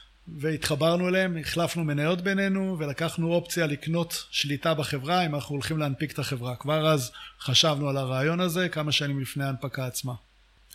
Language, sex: English, male